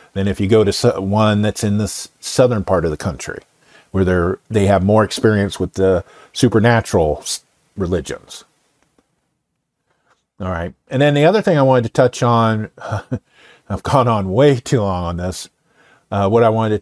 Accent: American